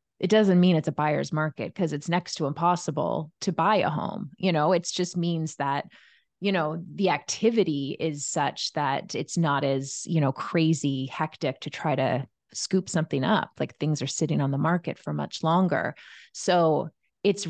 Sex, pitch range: female, 155-200 Hz